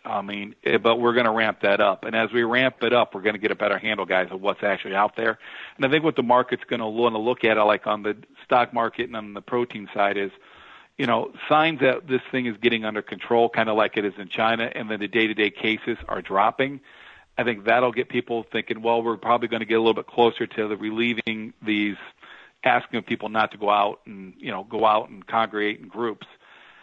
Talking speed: 245 wpm